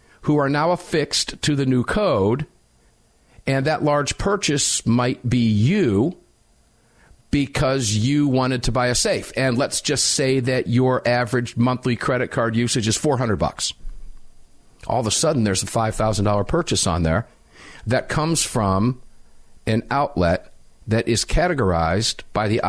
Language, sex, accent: English, male, American